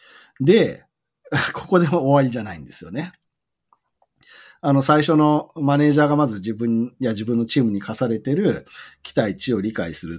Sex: male